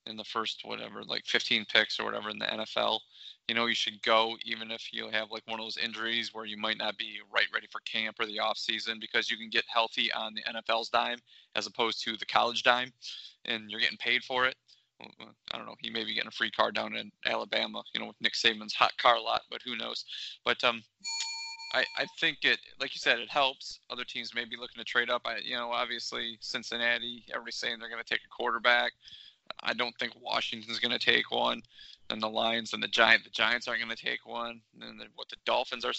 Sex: male